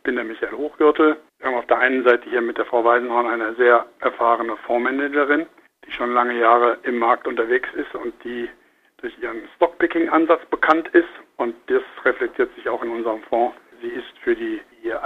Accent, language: German, German